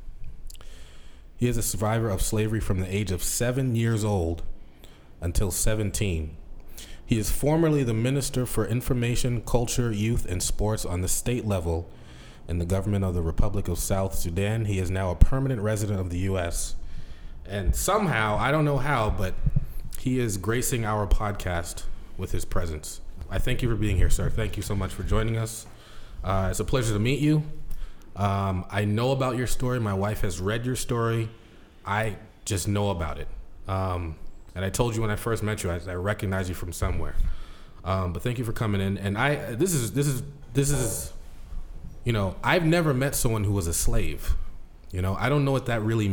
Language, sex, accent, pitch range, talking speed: English, male, American, 90-115 Hz, 195 wpm